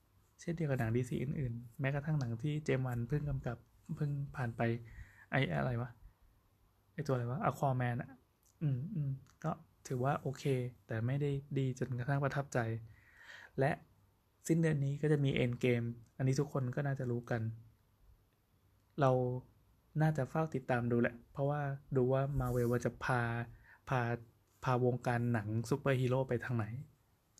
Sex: male